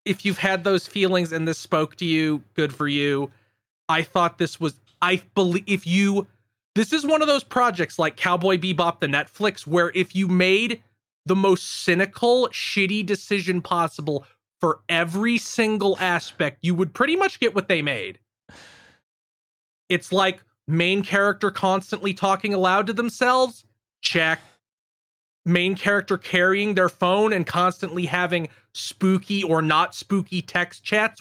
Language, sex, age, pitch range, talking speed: English, male, 30-49, 160-200 Hz, 150 wpm